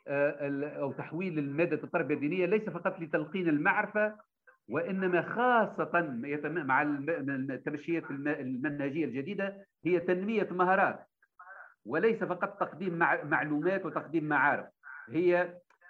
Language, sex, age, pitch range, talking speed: Arabic, male, 50-69, 150-185 Hz, 95 wpm